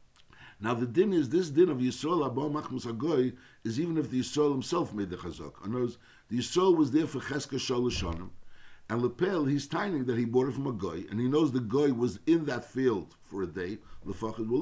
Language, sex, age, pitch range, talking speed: English, male, 60-79, 115-150 Hz, 200 wpm